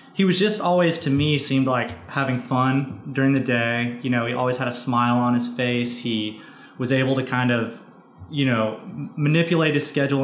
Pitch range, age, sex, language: 120-140 Hz, 20-39, male, English